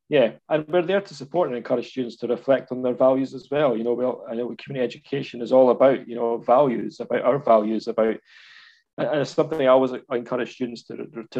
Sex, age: male, 30-49